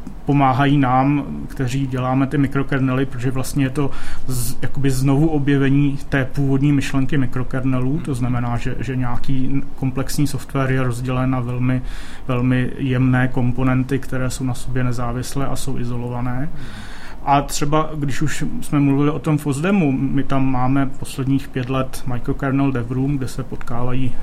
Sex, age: male, 30-49